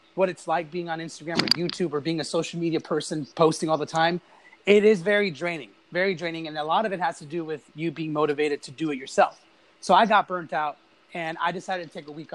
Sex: male